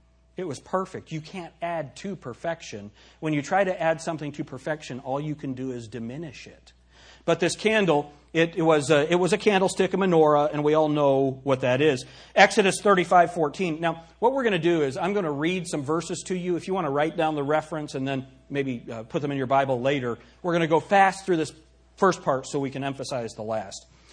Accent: American